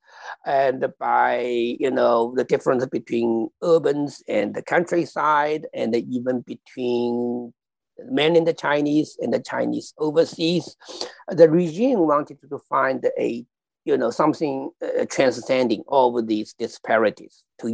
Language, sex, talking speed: English, male, 125 wpm